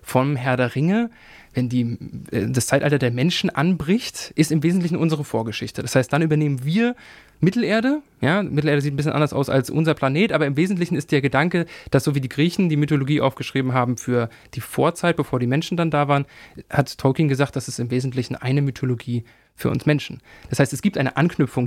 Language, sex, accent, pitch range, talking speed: German, male, German, 130-160 Hz, 205 wpm